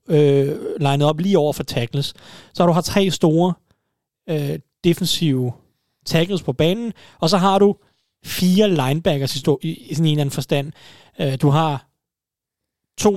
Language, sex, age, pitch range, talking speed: Danish, male, 30-49, 145-180 Hz, 165 wpm